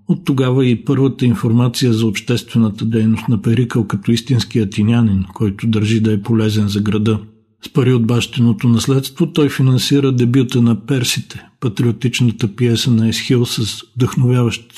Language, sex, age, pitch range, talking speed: Bulgarian, male, 50-69, 110-125 Hz, 150 wpm